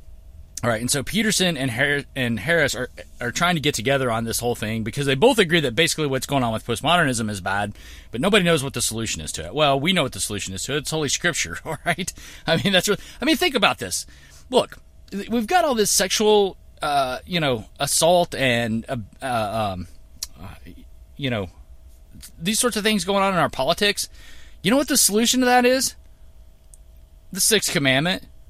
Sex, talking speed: male, 205 wpm